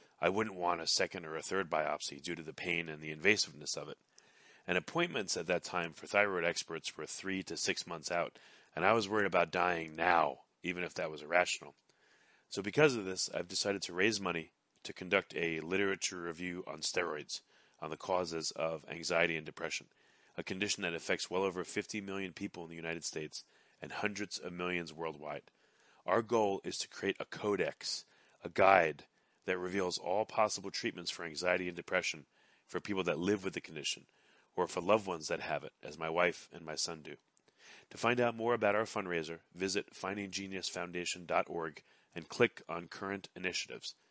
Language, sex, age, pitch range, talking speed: English, male, 30-49, 85-100 Hz, 190 wpm